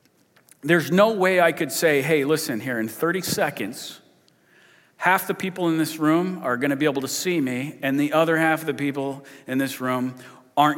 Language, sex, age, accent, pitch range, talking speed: English, male, 40-59, American, 135-175 Hz, 205 wpm